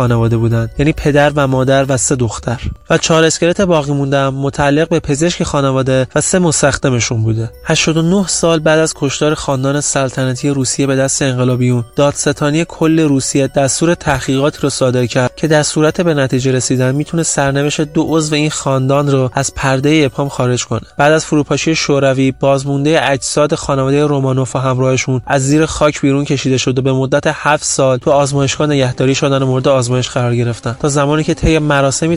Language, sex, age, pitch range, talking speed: Persian, male, 20-39, 130-155 Hz, 170 wpm